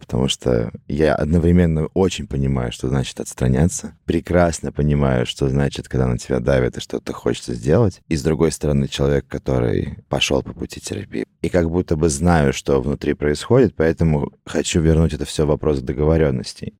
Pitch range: 75-90 Hz